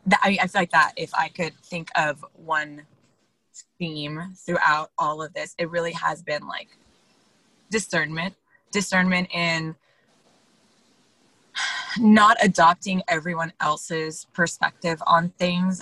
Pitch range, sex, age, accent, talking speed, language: 160-190 Hz, female, 20-39, American, 115 wpm, English